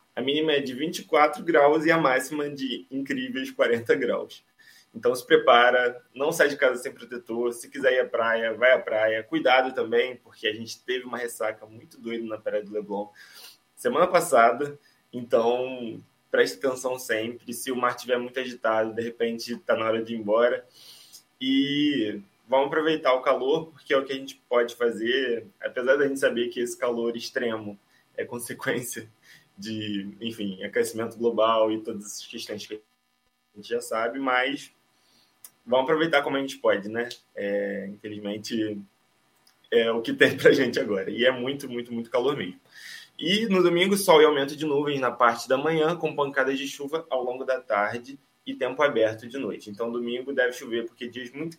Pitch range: 115-145 Hz